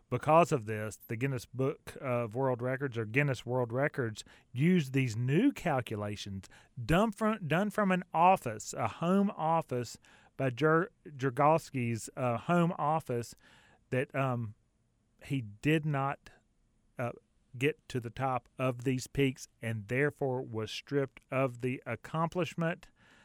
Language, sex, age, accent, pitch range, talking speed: English, male, 30-49, American, 120-145 Hz, 130 wpm